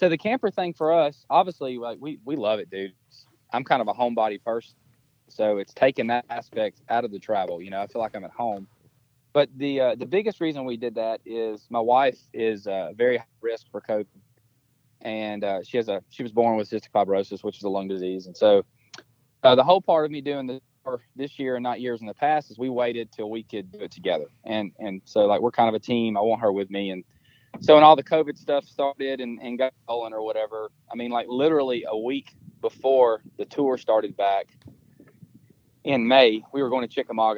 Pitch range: 110-140 Hz